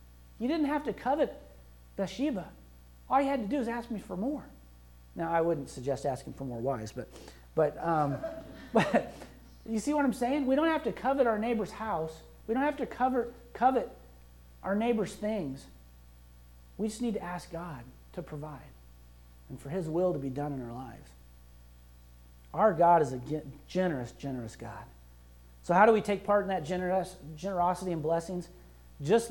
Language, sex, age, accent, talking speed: English, male, 40-59, American, 180 wpm